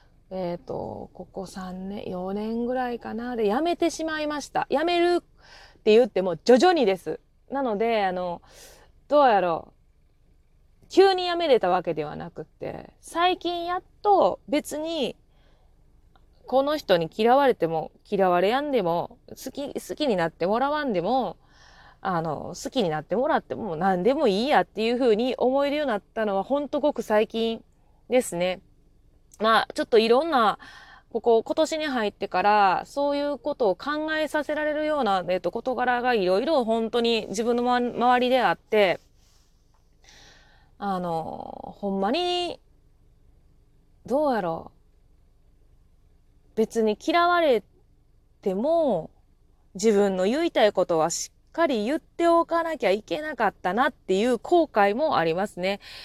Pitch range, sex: 195-295 Hz, female